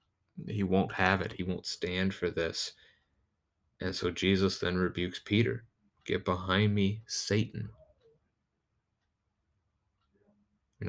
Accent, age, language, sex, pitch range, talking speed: American, 30-49, English, male, 90-110 Hz, 110 wpm